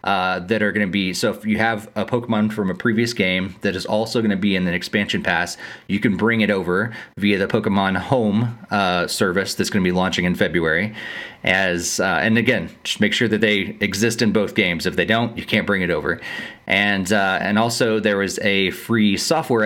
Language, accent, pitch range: English, American, 95-115 Hz